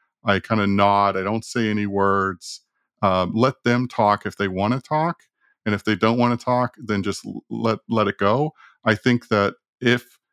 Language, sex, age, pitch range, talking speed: English, male, 40-59, 100-120 Hz, 205 wpm